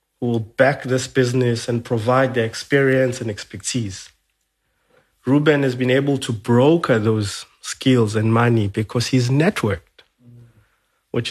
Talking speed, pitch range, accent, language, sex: 135 wpm, 120-145 Hz, South African, English, male